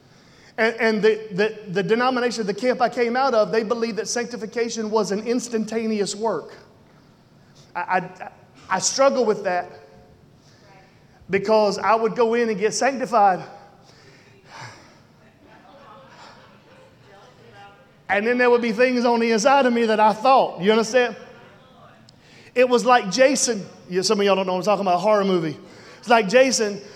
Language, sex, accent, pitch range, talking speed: English, male, American, 220-255 Hz, 155 wpm